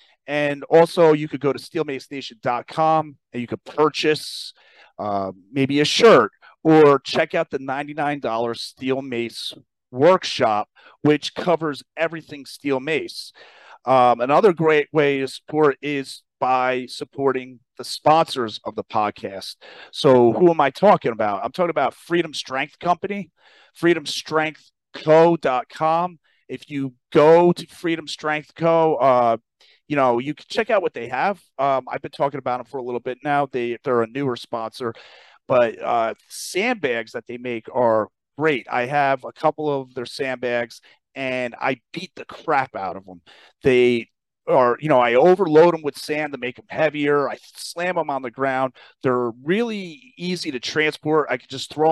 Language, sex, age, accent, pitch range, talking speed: English, male, 40-59, American, 125-155 Hz, 160 wpm